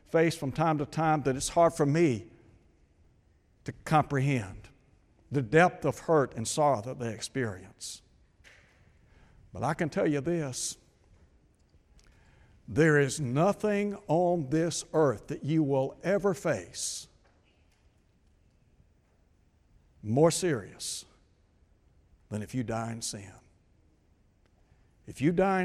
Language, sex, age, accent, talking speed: English, male, 60-79, American, 115 wpm